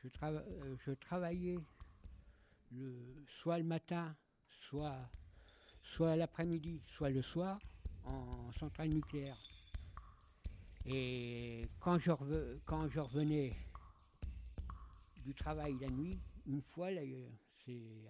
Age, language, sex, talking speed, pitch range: 60-79, French, male, 95 wpm, 120-160 Hz